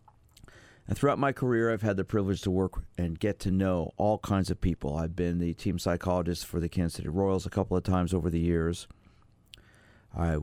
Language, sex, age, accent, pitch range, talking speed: English, male, 50-69, American, 90-105 Hz, 205 wpm